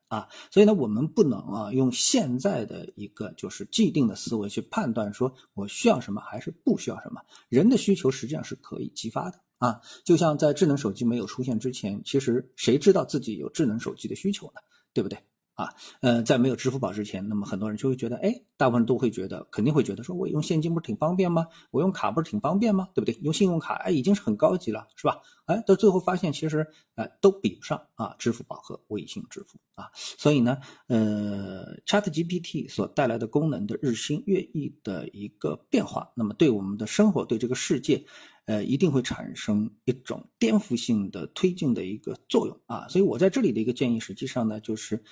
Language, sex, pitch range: Chinese, male, 115-185 Hz